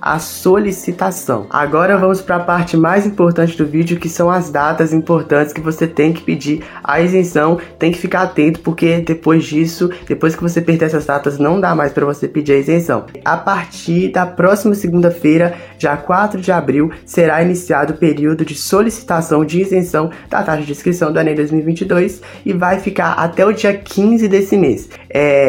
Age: 20-39